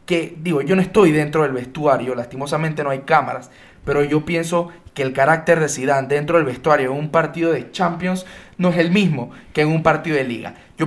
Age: 20-39